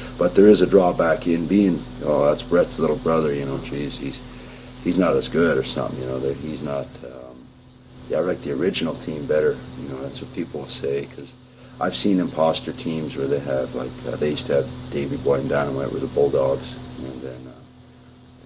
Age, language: 40-59, English